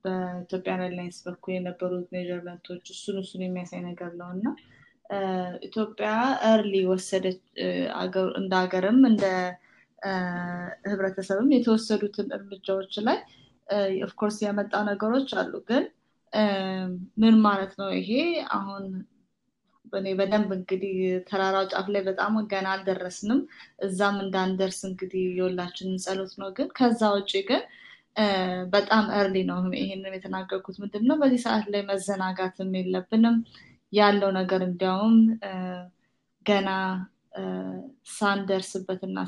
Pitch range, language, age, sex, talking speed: 185-210 Hz, Amharic, 20-39, female, 90 wpm